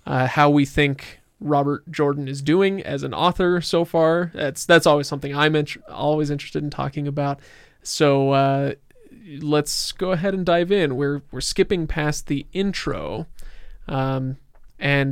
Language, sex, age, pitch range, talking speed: English, male, 20-39, 135-155 Hz, 165 wpm